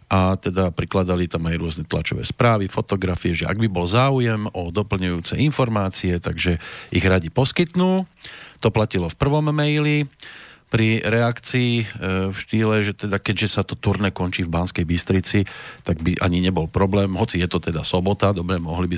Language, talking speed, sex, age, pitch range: Slovak, 170 wpm, male, 40-59, 90-115 Hz